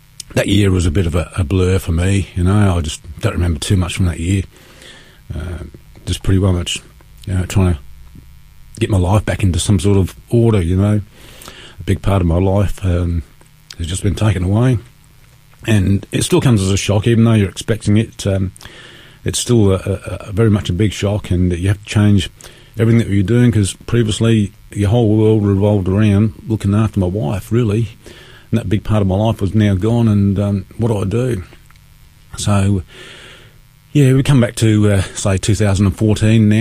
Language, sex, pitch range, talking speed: English, male, 95-115 Hz, 195 wpm